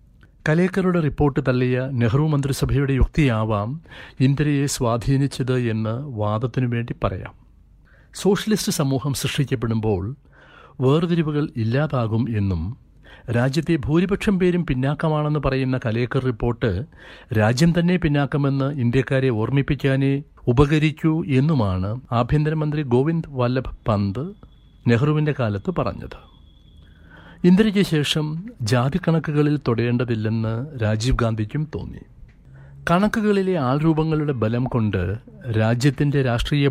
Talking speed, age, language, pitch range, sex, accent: 85 wpm, 60-79, Malayalam, 115-150 Hz, male, native